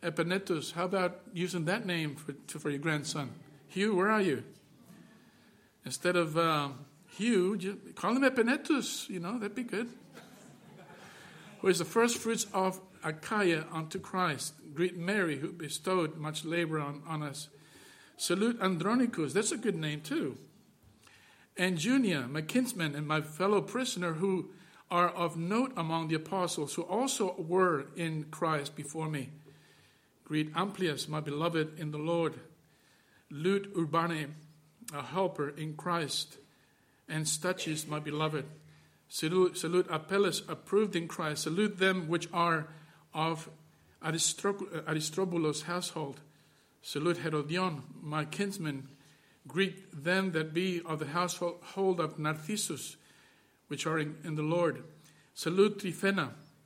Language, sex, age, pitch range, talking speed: English, male, 50-69, 155-185 Hz, 130 wpm